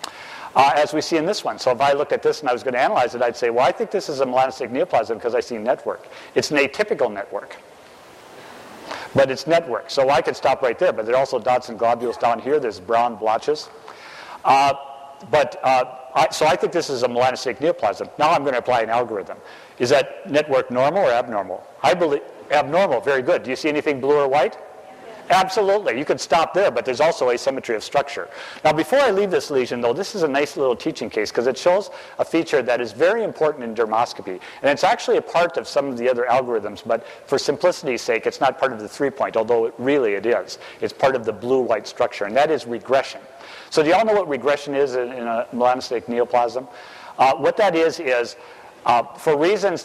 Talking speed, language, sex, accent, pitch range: 225 wpm, English, male, American, 125-210 Hz